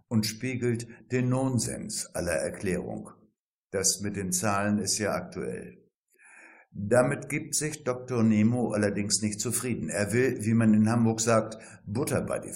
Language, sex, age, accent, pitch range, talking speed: German, male, 60-79, German, 110-130 Hz, 150 wpm